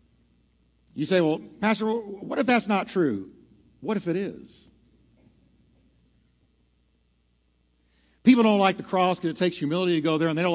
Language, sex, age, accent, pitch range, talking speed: English, male, 50-69, American, 115-170 Hz, 160 wpm